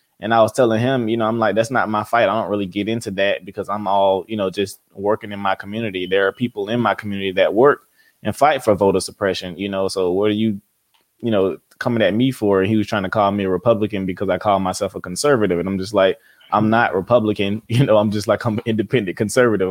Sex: male